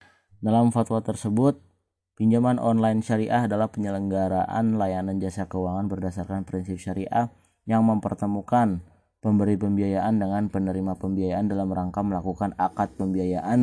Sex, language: male, Indonesian